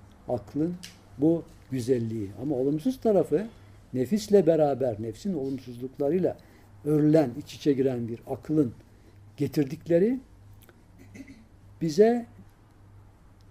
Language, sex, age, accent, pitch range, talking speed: Turkish, male, 60-79, native, 100-165 Hz, 80 wpm